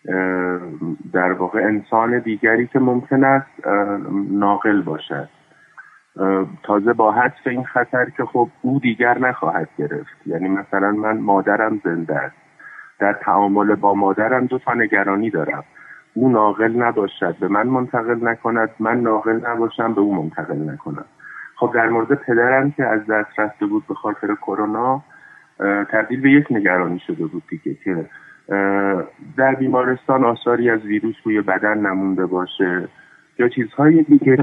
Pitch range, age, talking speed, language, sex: 100-125 Hz, 30-49, 140 wpm, Persian, male